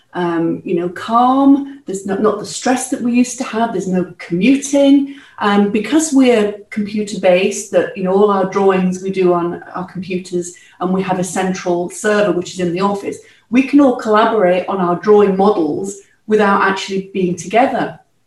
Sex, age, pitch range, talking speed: female, 40-59, 185-220 Hz, 185 wpm